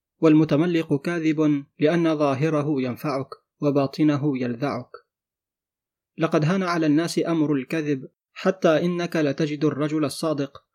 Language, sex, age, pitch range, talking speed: Arabic, male, 30-49, 145-160 Hz, 100 wpm